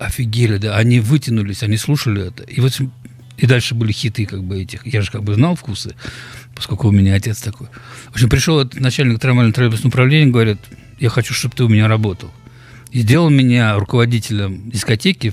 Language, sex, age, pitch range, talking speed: Russian, male, 50-69, 105-125 Hz, 185 wpm